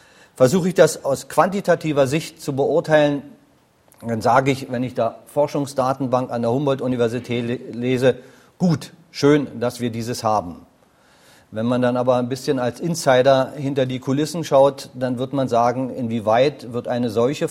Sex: male